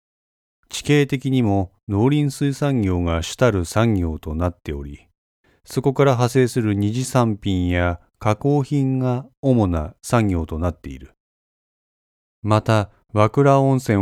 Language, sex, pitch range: Japanese, male, 85-120 Hz